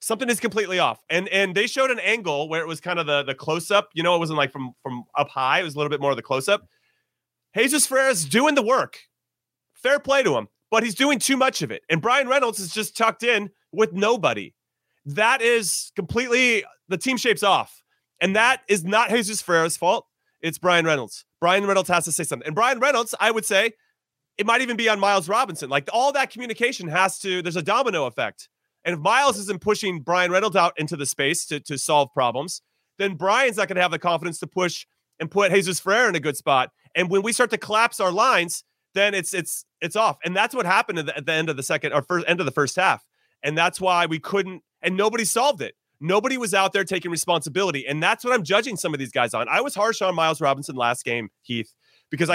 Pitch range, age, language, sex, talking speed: 160-220 Hz, 30-49, English, male, 235 wpm